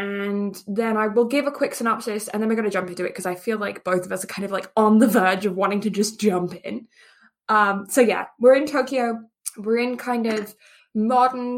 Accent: British